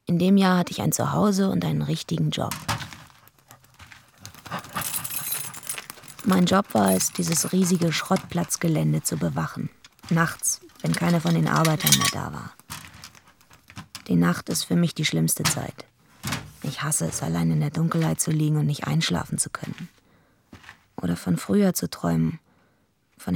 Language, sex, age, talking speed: German, female, 20-39, 145 wpm